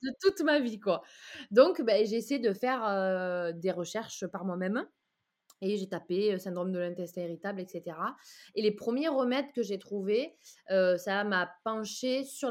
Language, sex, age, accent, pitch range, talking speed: French, female, 20-39, French, 185-235 Hz, 175 wpm